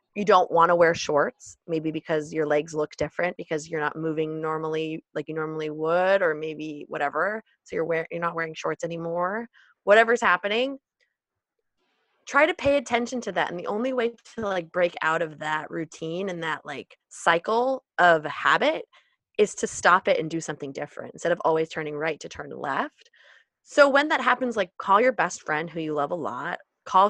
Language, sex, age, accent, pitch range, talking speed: English, female, 20-39, American, 155-205 Hz, 195 wpm